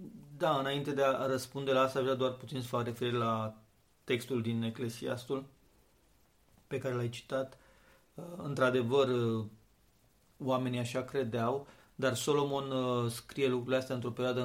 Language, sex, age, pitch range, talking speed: Romanian, male, 40-59, 115-135 Hz, 135 wpm